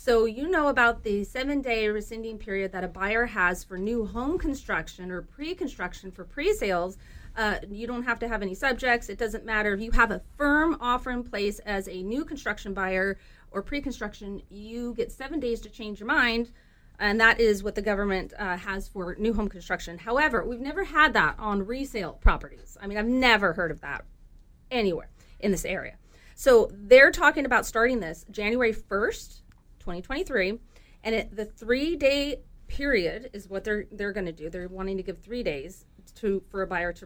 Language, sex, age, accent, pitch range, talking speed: English, female, 30-49, American, 195-260 Hz, 190 wpm